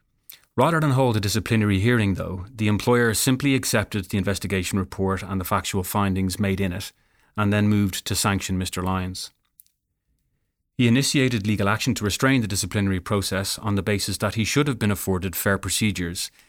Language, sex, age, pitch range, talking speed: English, male, 30-49, 95-110 Hz, 175 wpm